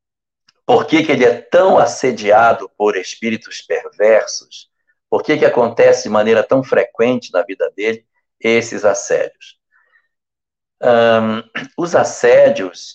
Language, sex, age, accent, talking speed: Portuguese, male, 60-79, Brazilian, 115 wpm